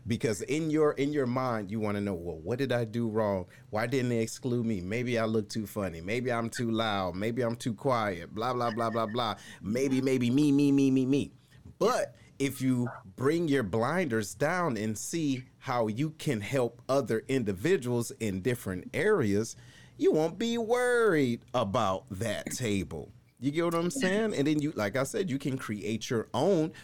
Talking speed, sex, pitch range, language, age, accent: 195 wpm, male, 105-135 Hz, English, 30-49, American